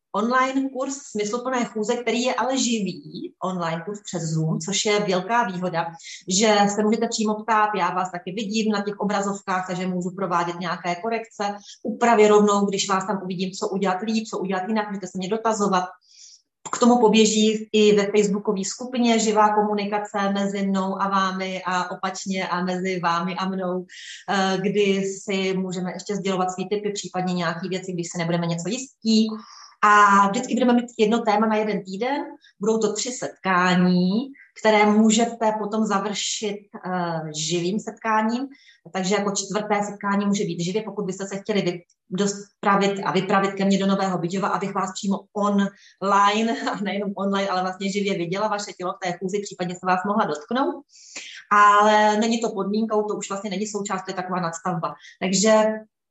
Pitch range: 185-215 Hz